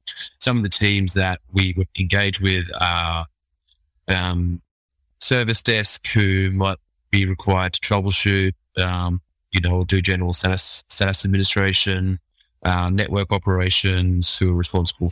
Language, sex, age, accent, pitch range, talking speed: English, male, 20-39, Australian, 90-100 Hz, 125 wpm